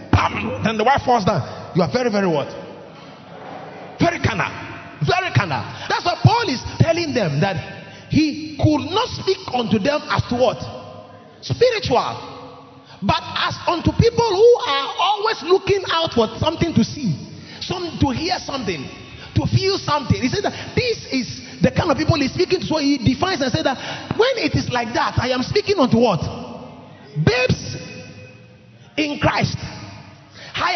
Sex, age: male, 30-49